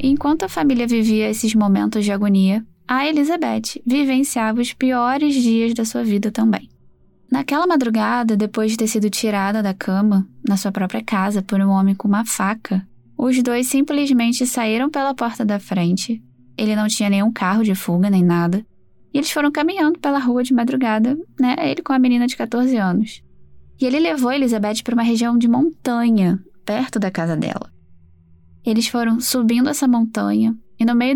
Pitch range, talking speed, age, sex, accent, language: 200-255 Hz, 175 wpm, 10-29, female, Brazilian, Portuguese